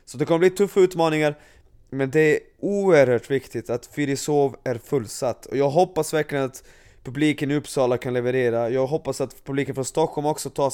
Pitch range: 130-170 Hz